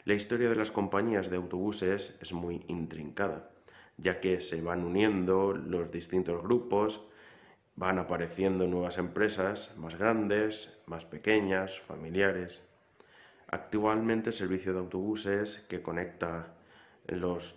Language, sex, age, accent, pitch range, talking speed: Spanish, male, 20-39, Spanish, 85-100 Hz, 120 wpm